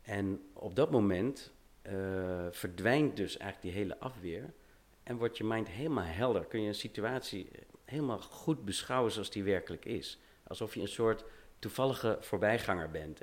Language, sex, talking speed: Dutch, male, 160 wpm